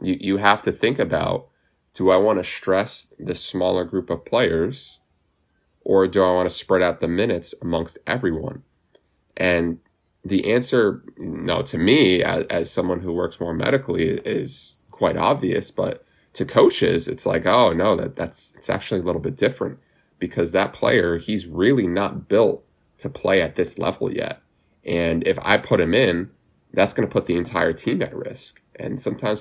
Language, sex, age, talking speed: English, male, 20-39, 185 wpm